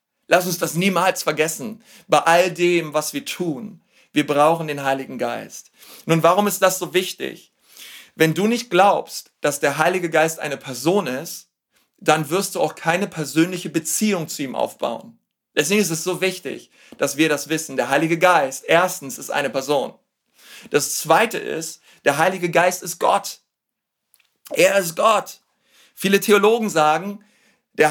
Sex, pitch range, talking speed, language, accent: male, 170-205 Hz, 160 wpm, German, German